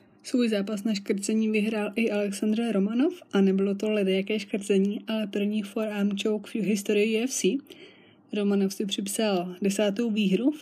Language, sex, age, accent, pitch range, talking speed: Czech, female, 20-39, native, 195-220 Hz, 145 wpm